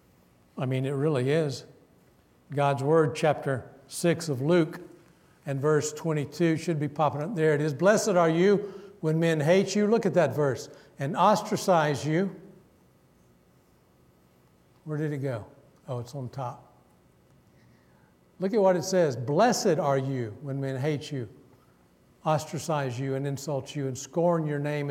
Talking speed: 155 wpm